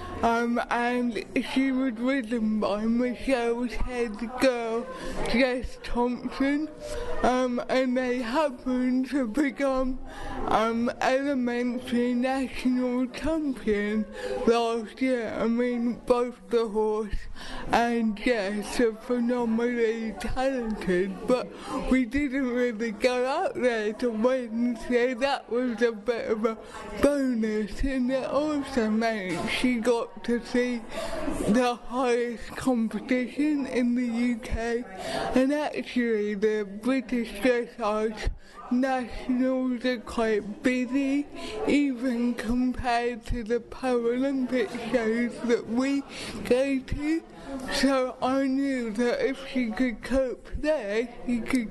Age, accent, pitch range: 20-39, British, 230-260 Hz